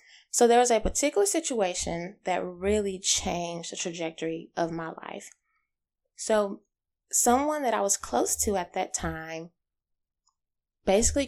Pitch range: 190-260 Hz